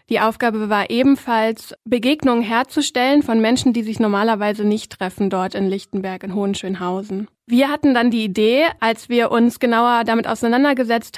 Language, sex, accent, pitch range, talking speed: German, female, German, 220-245 Hz, 155 wpm